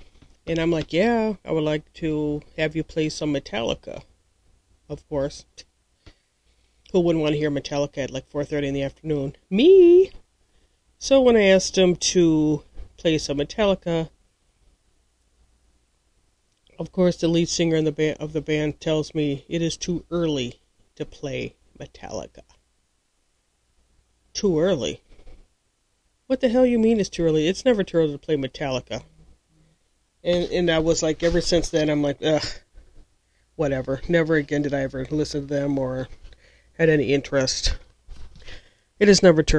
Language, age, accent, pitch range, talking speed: English, 40-59, American, 130-165 Hz, 155 wpm